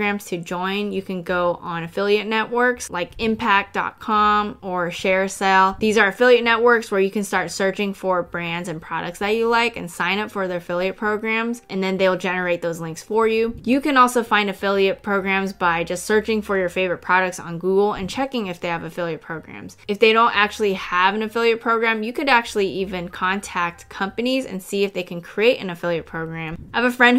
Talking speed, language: 205 wpm, English